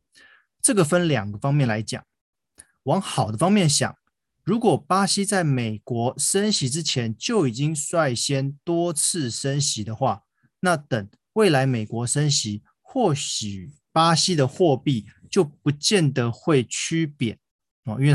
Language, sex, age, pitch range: Chinese, male, 20-39, 125-175 Hz